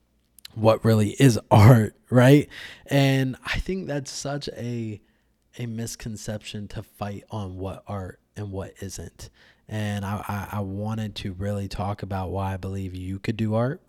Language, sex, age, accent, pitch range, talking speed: English, male, 20-39, American, 105-120 Hz, 160 wpm